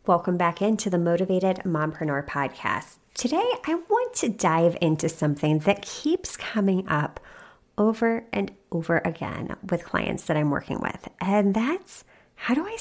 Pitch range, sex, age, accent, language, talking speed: 175-260 Hz, female, 30-49, American, English, 155 wpm